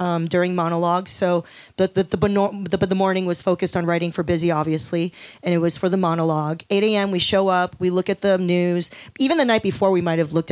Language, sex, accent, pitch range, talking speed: English, female, American, 170-200 Hz, 240 wpm